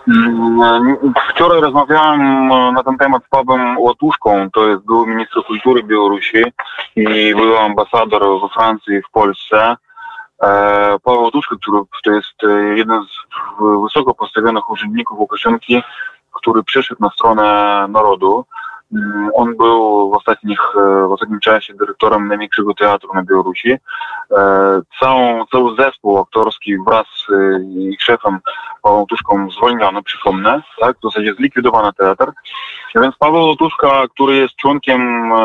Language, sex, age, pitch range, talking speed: Polish, male, 20-39, 105-145 Hz, 120 wpm